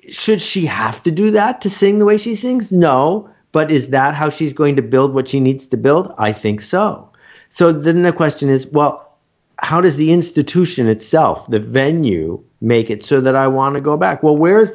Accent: American